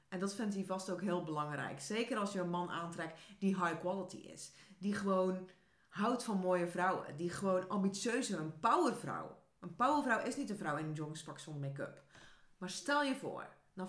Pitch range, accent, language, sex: 180-250 Hz, Dutch, English, female